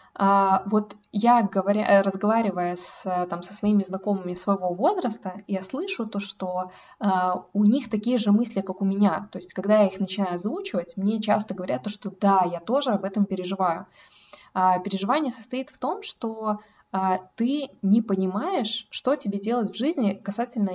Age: 20-39